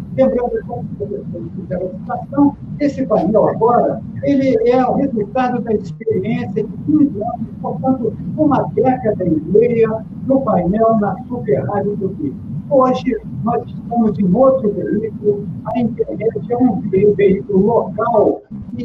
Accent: Brazilian